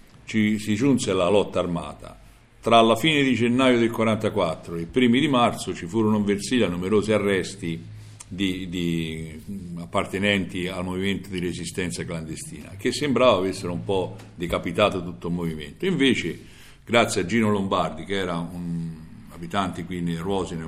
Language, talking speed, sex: Italian, 155 wpm, male